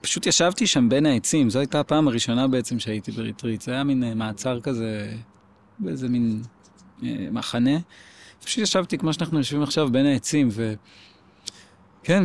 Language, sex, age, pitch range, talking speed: Hebrew, male, 20-39, 115-150 Hz, 150 wpm